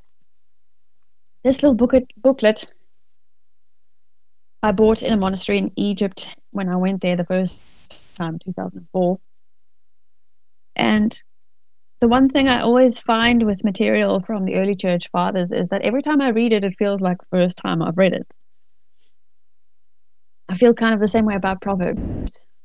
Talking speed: 150 wpm